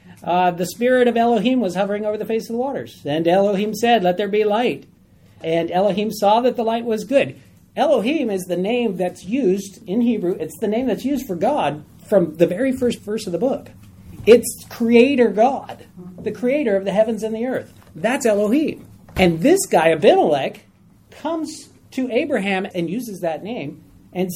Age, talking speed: 40-59, 185 wpm